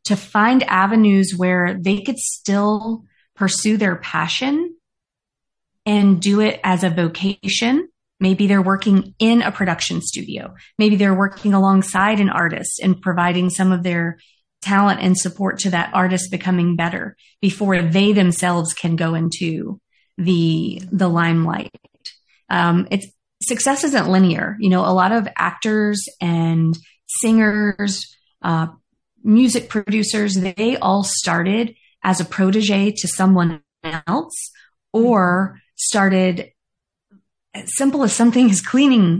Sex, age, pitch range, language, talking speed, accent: female, 30-49, 180-215 Hz, English, 130 wpm, American